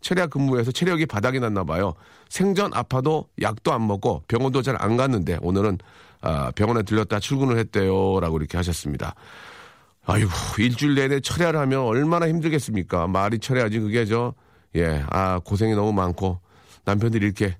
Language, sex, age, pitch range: Korean, male, 40-59, 95-125 Hz